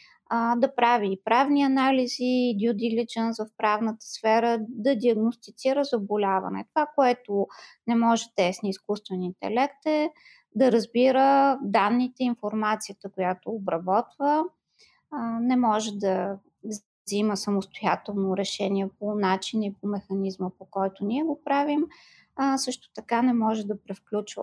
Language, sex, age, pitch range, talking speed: Bulgarian, female, 20-39, 205-255 Hz, 120 wpm